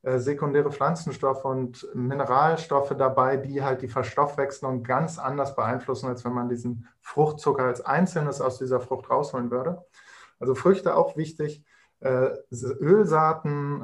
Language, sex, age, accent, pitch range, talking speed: German, male, 20-39, German, 130-145 Hz, 125 wpm